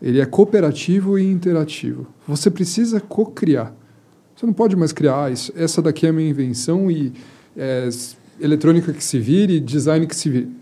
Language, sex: Portuguese, male